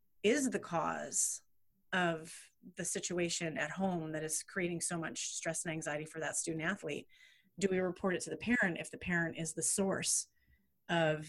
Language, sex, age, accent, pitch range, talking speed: English, female, 30-49, American, 165-190 Hz, 180 wpm